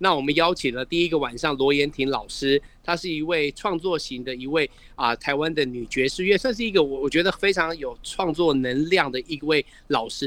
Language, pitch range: Chinese, 140-175 Hz